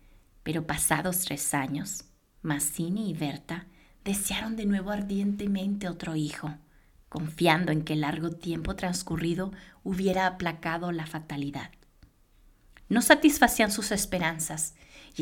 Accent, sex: Mexican, female